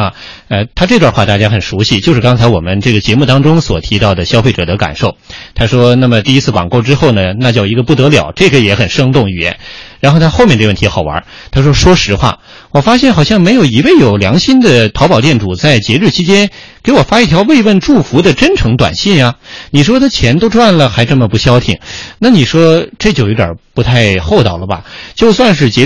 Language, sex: Chinese, male